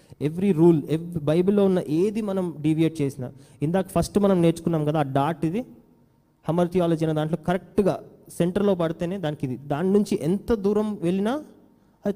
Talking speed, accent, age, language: 155 wpm, native, 20-39, Telugu